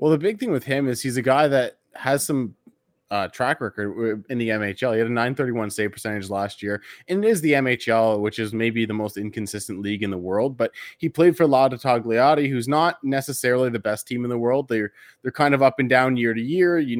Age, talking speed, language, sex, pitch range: 20-39, 240 wpm, English, male, 110-140 Hz